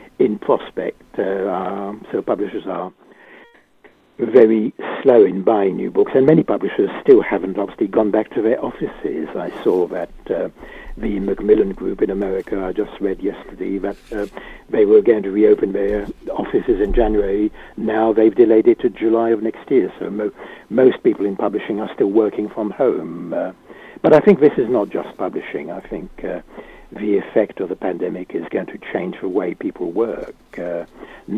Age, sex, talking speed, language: 60-79, male, 175 wpm, English